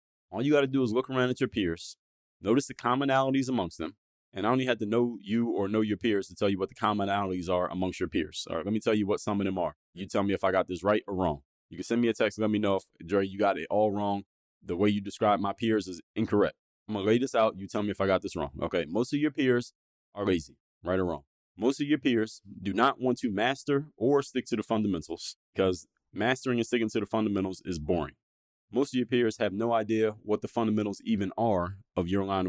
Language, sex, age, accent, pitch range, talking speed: English, male, 30-49, American, 95-115 Hz, 265 wpm